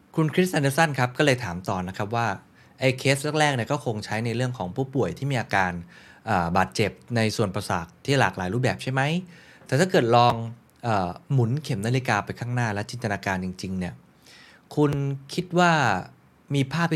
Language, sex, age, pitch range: Thai, male, 20-39, 95-130 Hz